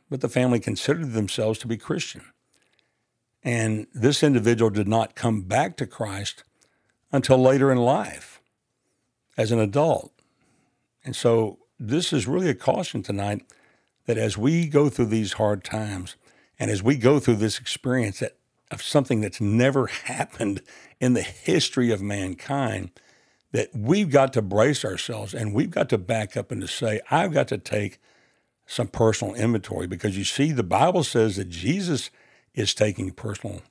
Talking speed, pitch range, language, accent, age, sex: 160 wpm, 110-135 Hz, English, American, 60-79, male